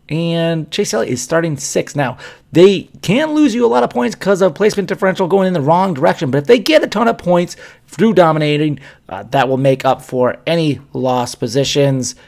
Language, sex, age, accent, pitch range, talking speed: English, male, 30-49, American, 125-165 Hz, 210 wpm